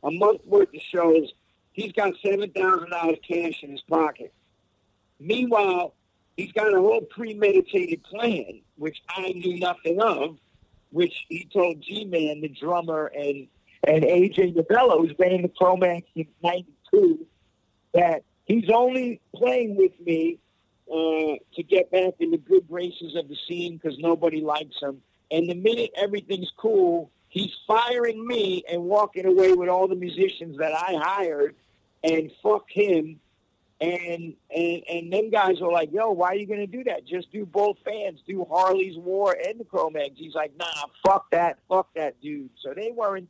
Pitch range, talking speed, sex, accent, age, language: 155-205 Hz, 170 wpm, male, American, 50-69, English